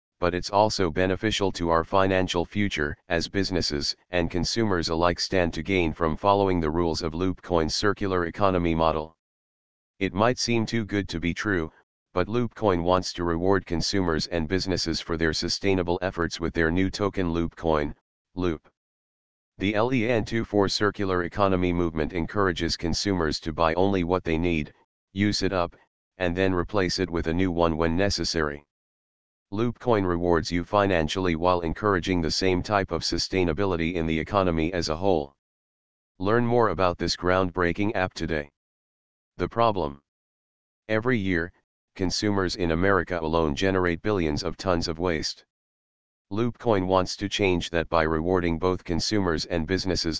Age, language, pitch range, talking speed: 40-59, English, 80-95 Hz, 150 wpm